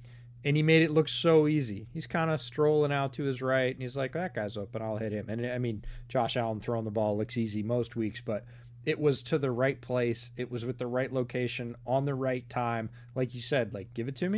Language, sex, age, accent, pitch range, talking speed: English, male, 30-49, American, 120-140 Hz, 255 wpm